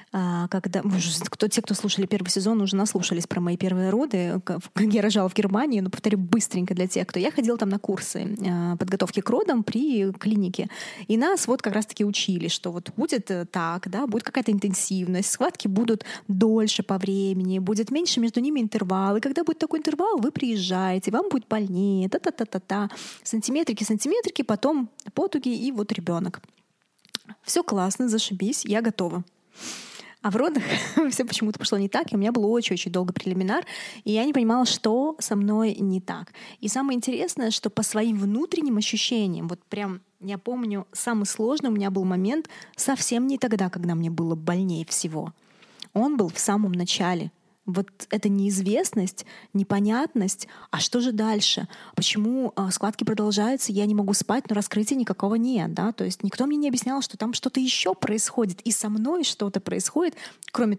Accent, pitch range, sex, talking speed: native, 190-230 Hz, female, 170 wpm